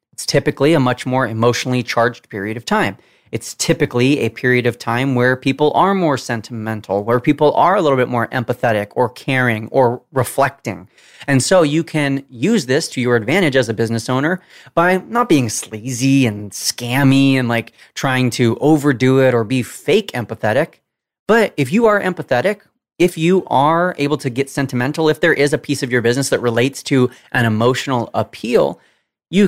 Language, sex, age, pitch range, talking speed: English, male, 30-49, 125-170 Hz, 180 wpm